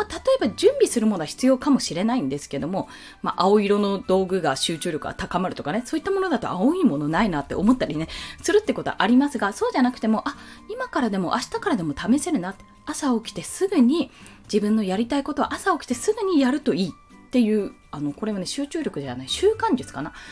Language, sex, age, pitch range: Japanese, female, 20-39, 185-300 Hz